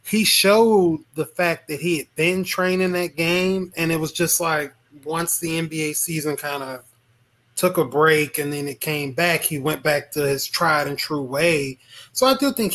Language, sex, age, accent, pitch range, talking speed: English, male, 20-39, American, 140-175 Hz, 195 wpm